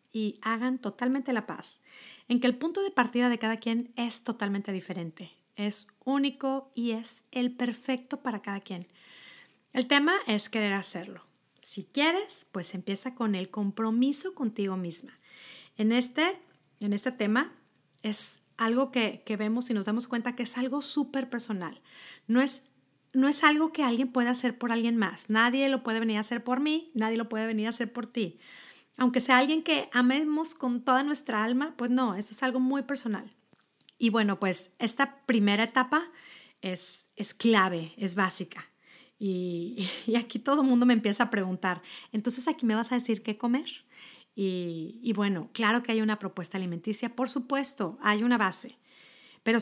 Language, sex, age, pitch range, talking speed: Spanish, female, 40-59, 205-255 Hz, 180 wpm